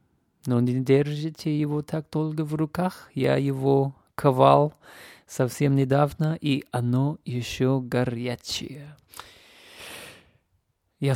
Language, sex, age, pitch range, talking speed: Russian, male, 30-49, 120-145 Hz, 95 wpm